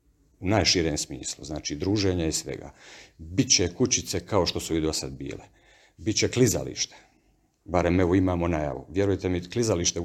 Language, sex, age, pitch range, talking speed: Croatian, male, 50-69, 85-105 Hz, 155 wpm